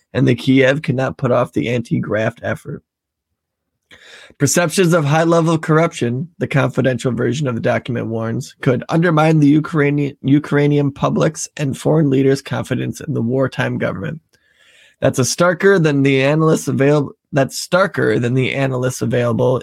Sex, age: male, 20-39